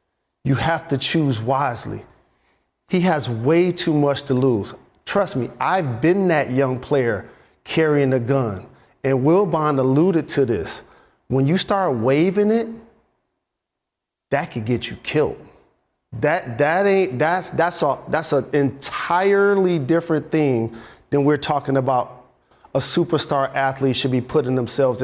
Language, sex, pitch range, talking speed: English, male, 135-170 Hz, 145 wpm